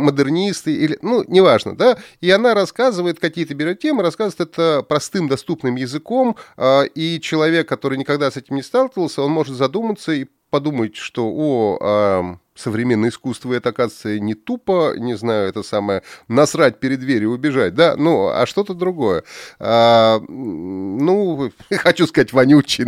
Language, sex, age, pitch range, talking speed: Russian, male, 30-49, 125-180 Hz, 145 wpm